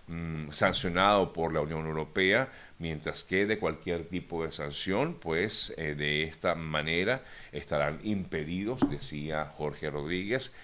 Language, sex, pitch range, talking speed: Spanish, male, 75-90 Hz, 125 wpm